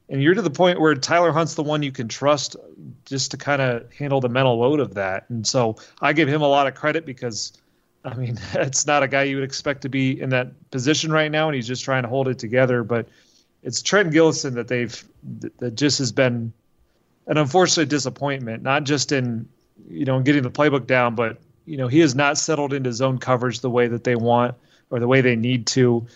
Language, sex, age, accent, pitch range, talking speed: English, male, 30-49, American, 125-145 Hz, 230 wpm